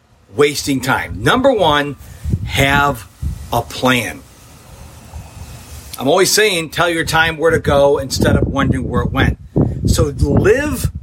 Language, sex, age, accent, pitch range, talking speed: English, male, 40-59, American, 135-190 Hz, 130 wpm